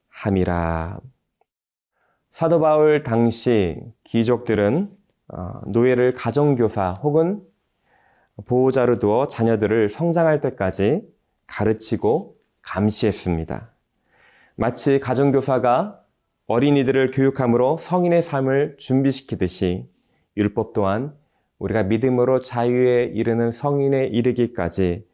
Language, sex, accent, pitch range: Korean, male, native, 100-135 Hz